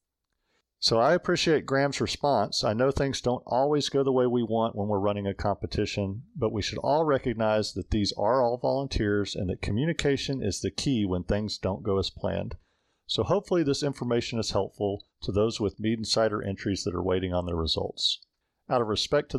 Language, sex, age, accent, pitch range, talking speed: English, male, 40-59, American, 95-125 Hz, 200 wpm